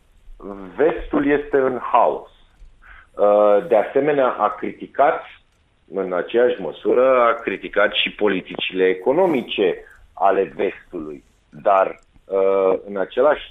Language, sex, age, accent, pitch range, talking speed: Romanian, male, 40-59, native, 95-125 Hz, 95 wpm